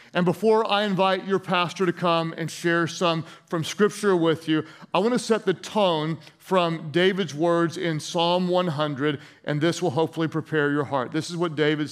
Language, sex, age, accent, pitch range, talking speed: English, male, 40-59, American, 175-240 Hz, 190 wpm